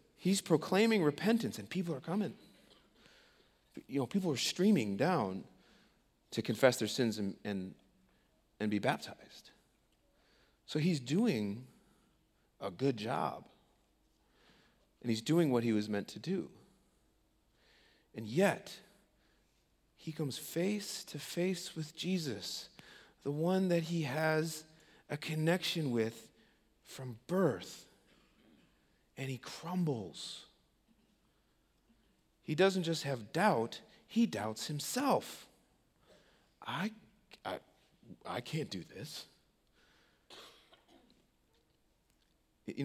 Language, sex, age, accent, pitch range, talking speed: English, male, 40-59, American, 120-180 Hz, 100 wpm